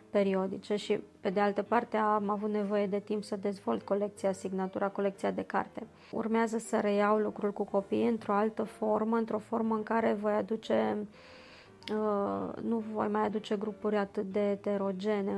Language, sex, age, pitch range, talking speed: Romanian, female, 20-39, 205-220 Hz, 160 wpm